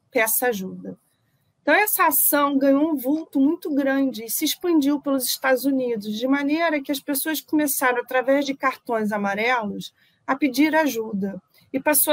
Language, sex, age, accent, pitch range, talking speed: Portuguese, female, 40-59, Brazilian, 230-295 Hz, 155 wpm